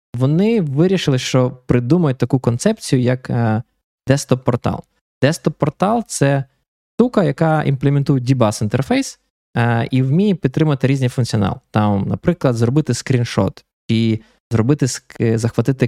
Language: Ukrainian